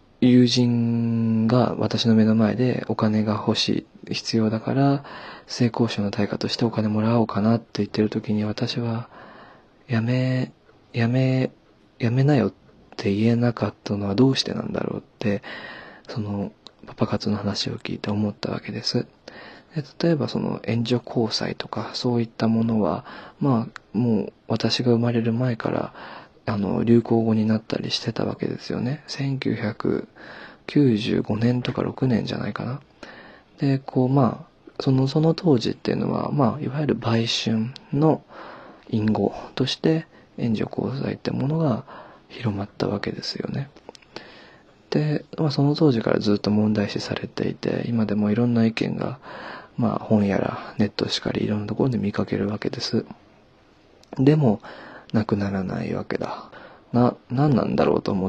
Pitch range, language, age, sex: 105-125 Hz, Japanese, 20-39, male